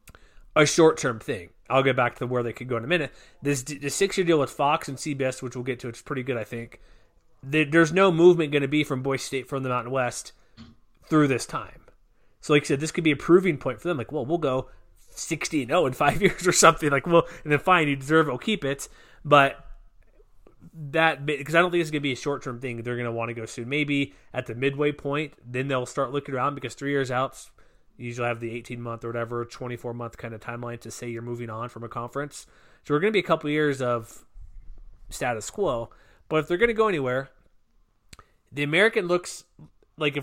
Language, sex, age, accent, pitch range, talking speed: English, male, 30-49, American, 120-155 Hz, 245 wpm